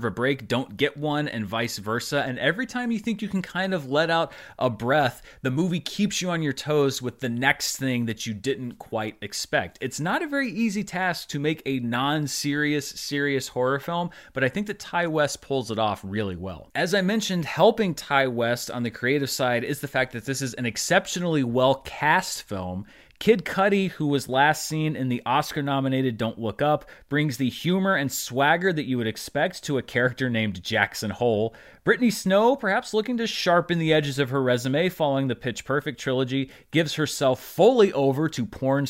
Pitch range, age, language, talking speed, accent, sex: 120-170 Hz, 30-49, English, 205 wpm, American, male